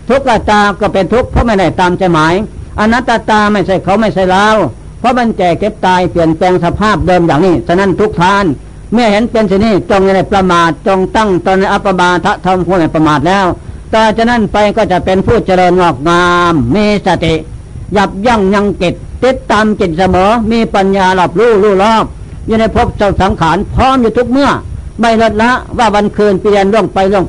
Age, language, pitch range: 60-79, Thai, 185-225 Hz